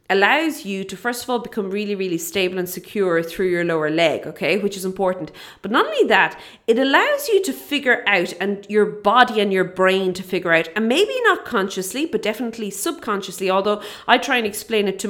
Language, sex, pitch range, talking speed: English, female, 185-225 Hz, 210 wpm